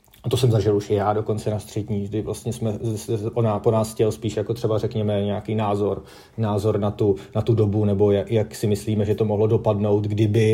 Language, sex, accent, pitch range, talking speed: Czech, male, native, 105-115 Hz, 215 wpm